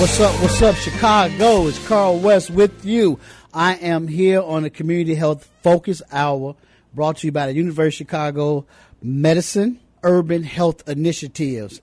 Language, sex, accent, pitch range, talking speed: English, male, American, 135-170 Hz, 155 wpm